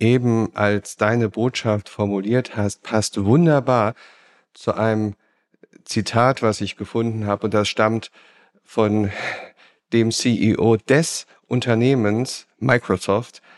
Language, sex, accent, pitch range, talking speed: German, male, German, 105-130 Hz, 105 wpm